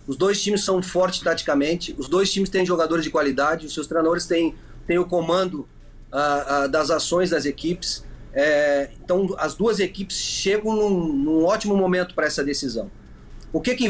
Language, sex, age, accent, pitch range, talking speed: Portuguese, male, 30-49, Brazilian, 160-195 Hz, 175 wpm